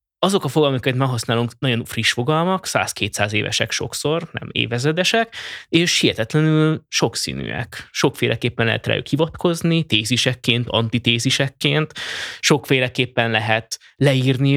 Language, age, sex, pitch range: Hungarian, 20-39, male, 110-150 Hz